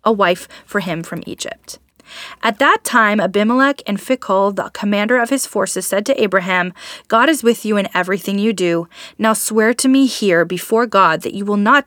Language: English